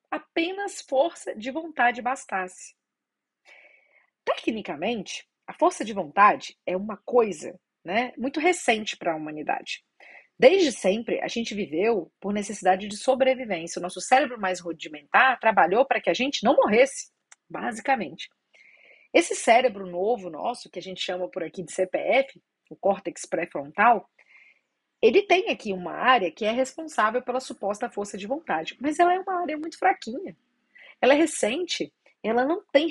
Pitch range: 185-270 Hz